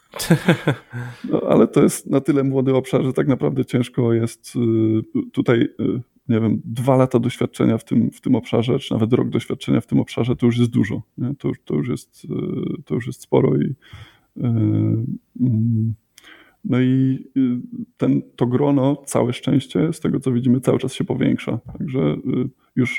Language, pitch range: Polish, 115-135 Hz